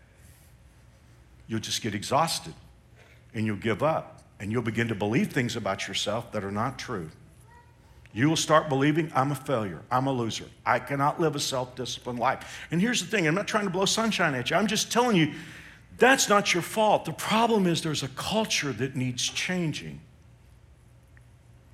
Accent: American